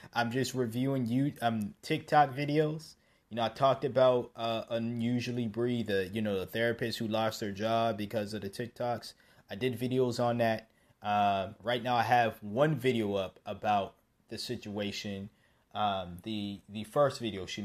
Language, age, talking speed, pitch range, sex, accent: English, 20-39, 170 wpm, 100-120 Hz, male, American